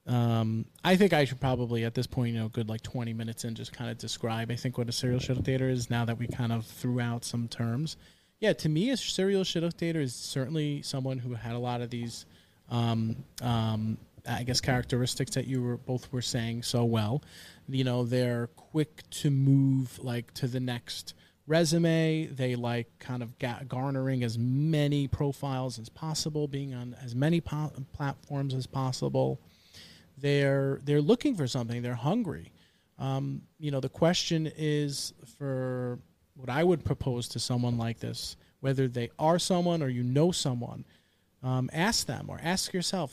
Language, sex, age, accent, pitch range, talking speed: English, male, 30-49, American, 120-145 Hz, 185 wpm